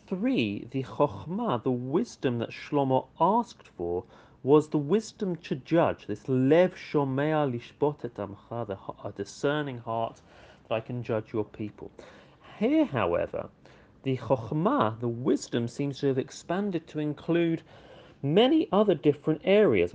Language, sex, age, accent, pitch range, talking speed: English, male, 40-59, British, 120-155 Hz, 135 wpm